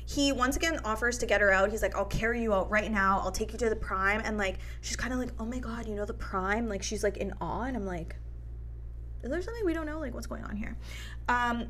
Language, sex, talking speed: English, female, 280 wpm